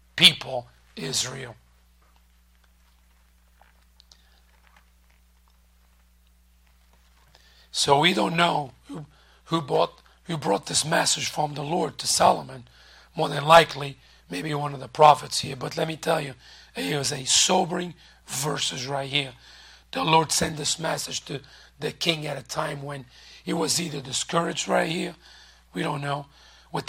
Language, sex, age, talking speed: English, male, 40-59, 135 wpm